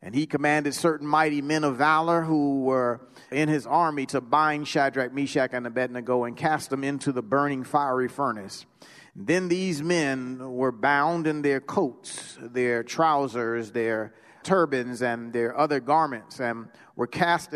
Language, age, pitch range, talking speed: English, 40-59, 125-160 Hz, 155 wpm